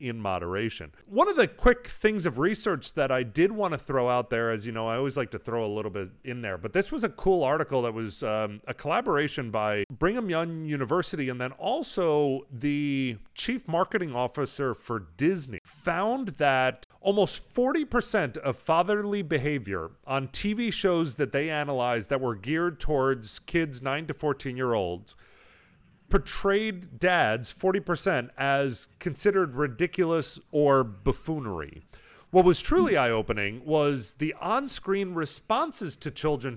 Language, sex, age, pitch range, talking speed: English, male, 30-49, 120-175 Hz, 155 wpm